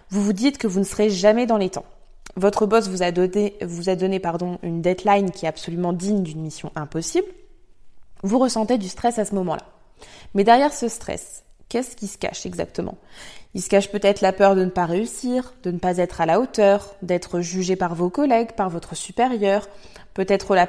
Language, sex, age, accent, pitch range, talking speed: French, female, 20-39, French, 190-240 Hz, 210 wpm